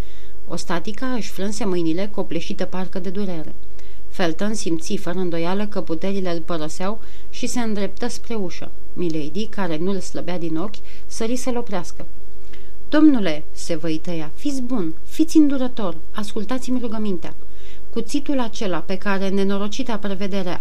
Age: 40-59